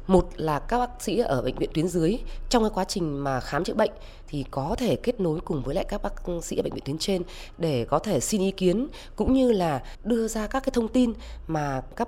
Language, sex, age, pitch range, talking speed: Vietnamese, female, 20-39, 160-220 Hz, 250 wpm